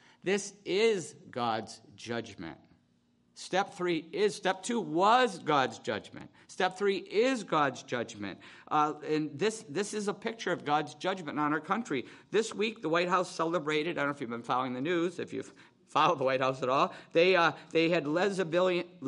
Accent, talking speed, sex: American, 180 wpm, male